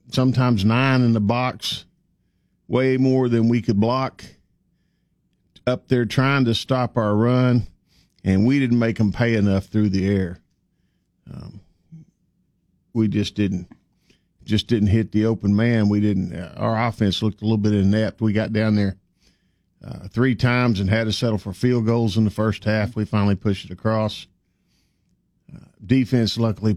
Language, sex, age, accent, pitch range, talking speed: English, male, 50-69, American, 100-120 Hz, 165 wpm